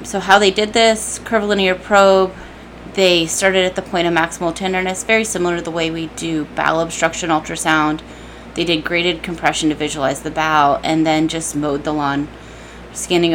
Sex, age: female, 20-39